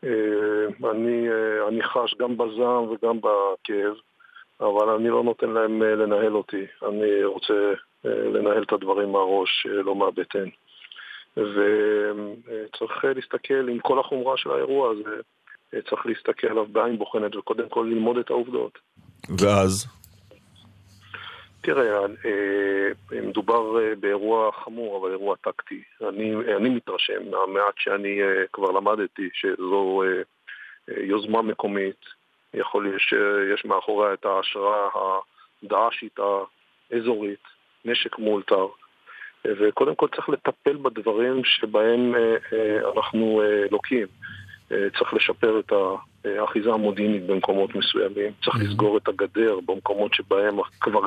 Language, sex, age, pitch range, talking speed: Hebrew, male, 50-69, 100-130 Hz, 105 wpm